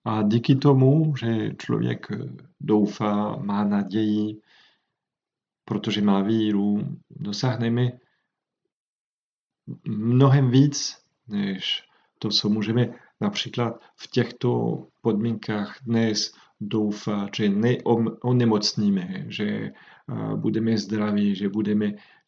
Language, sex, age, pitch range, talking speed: Czech, male, 40-59, 105-125 Hz, 85 wpm